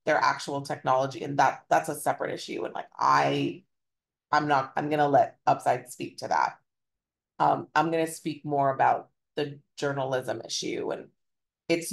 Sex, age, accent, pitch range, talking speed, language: female, 30-49, American, 135-155 Hz, 160 wpm, English